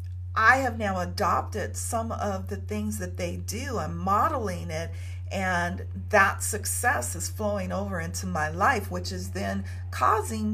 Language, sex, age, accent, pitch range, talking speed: English, female, 50-69, American, 90-95 Hz, 155 wpm